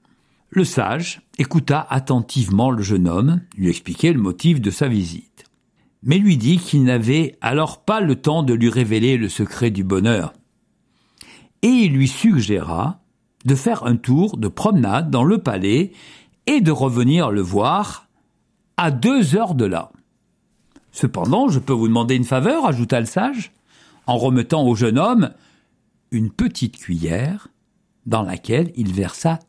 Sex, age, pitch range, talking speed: male, 50-69, 110-170 Hz, 155 wpm